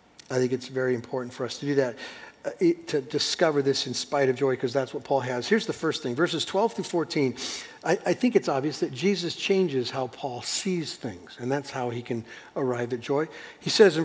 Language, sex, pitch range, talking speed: English, male, 130-185 Hz, 230 wpm